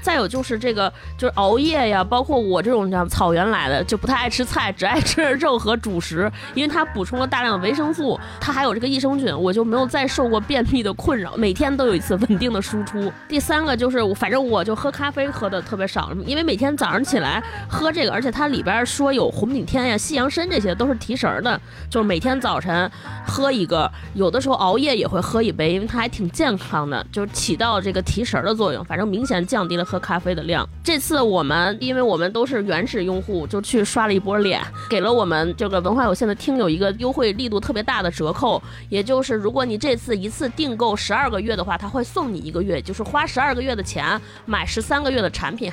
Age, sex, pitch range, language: 20-39, female, 195-265 Hz, Chinese